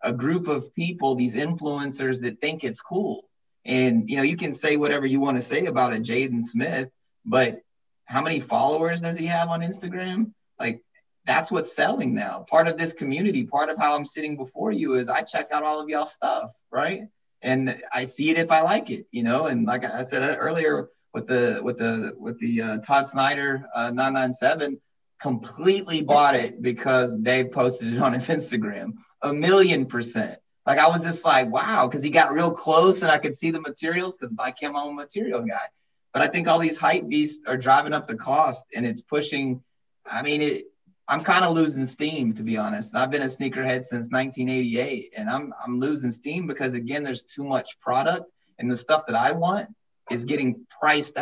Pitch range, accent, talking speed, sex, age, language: 130-165 Hz, American, 205 wpm, male, 30-49, English